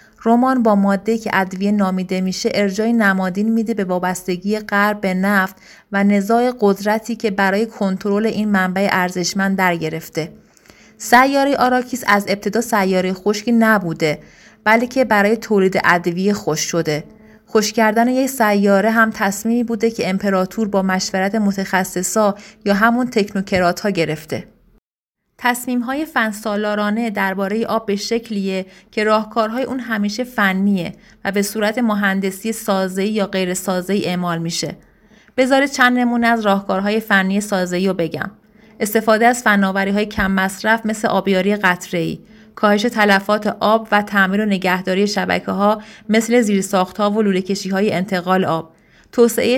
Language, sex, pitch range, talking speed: Persian, female, 190-220 Hz, 135 wpm